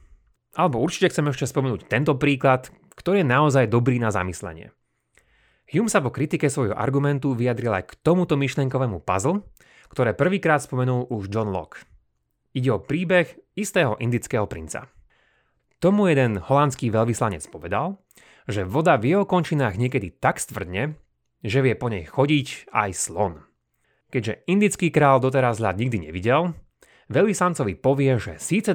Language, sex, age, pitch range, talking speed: Slovak, male, 30-49, 105-145 Hz, 145 wpm